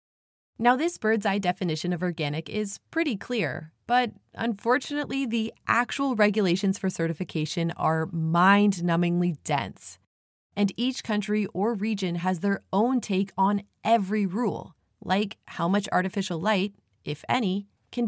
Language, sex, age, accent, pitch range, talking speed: English, female, 30-49, American, 160-215 Hz, 135 wpm